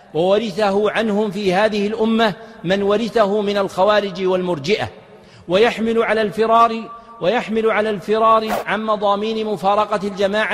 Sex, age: male, 50-69